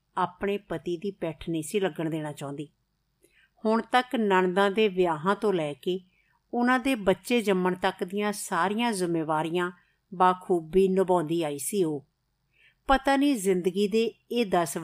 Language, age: Punjabi, 50-69